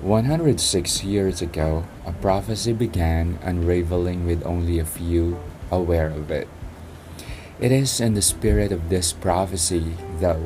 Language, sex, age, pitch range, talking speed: English, male, 20-39, 85-95 Hz, 130 wpm